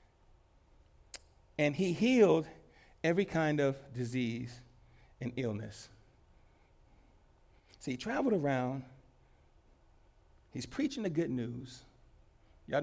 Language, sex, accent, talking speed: English, male, American, 90 wpm